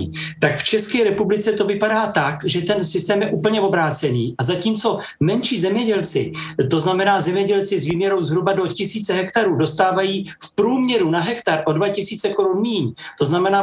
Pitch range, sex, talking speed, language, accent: 160-205 Hz, male, 165 wpm, Czech, native